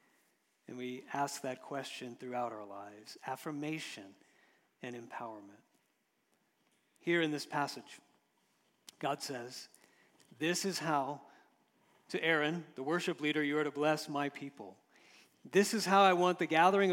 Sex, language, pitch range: male, English, 145-190 Hz